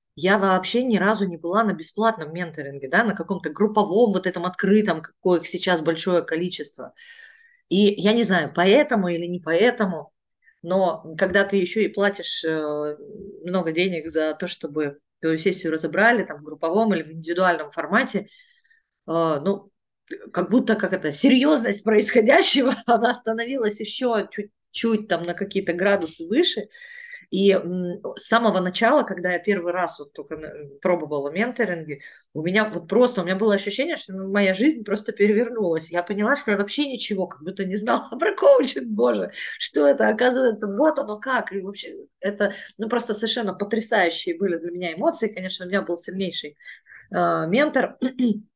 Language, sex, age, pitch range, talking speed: Russian, female, 30-49, 170-225 Hz, 160 wpm